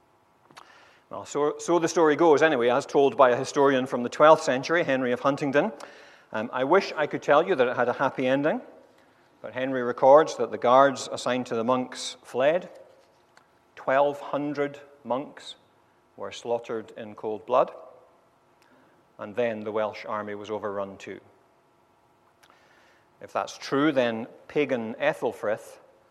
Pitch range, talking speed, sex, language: 115-150 Hz, 145 wpm, male, English